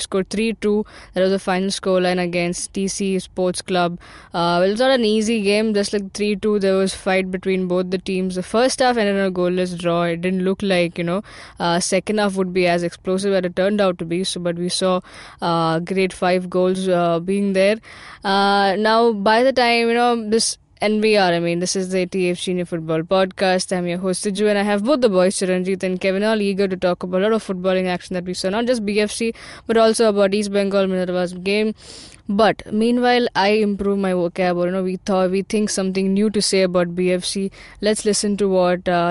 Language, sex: English, female